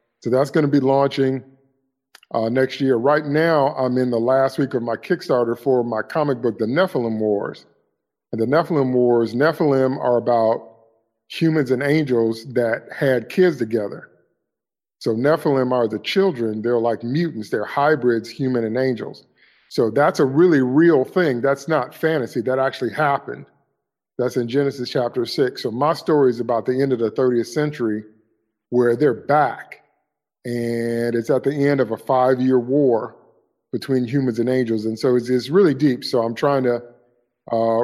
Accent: American